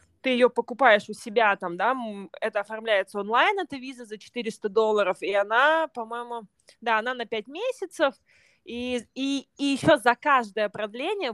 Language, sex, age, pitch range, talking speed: Russian, female, 20-39, 200-250 Hz, 160 wpm